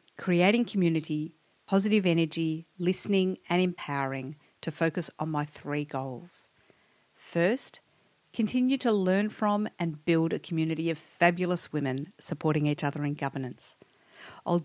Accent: Australian